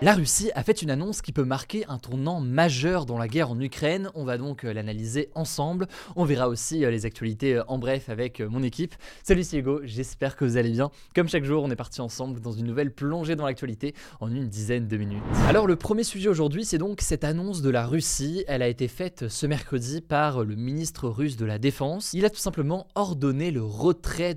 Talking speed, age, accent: 220 wpm, 20-39, French